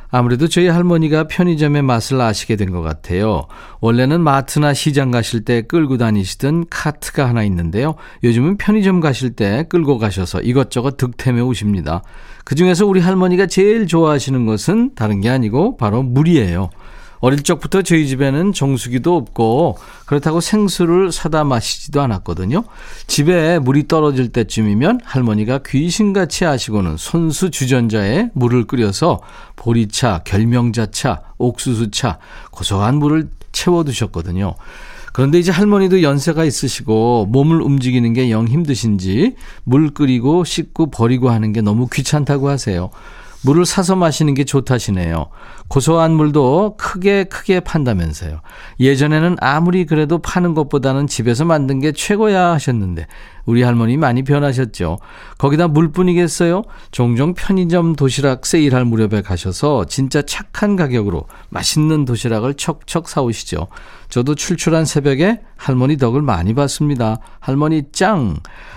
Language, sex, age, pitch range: Korean, male, 40-59, 115-165 Hz